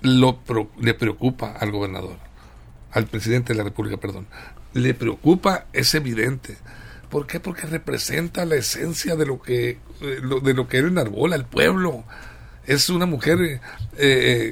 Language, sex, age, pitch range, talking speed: Spanish, male, 60-79, 125-165 Hz, 155 wpm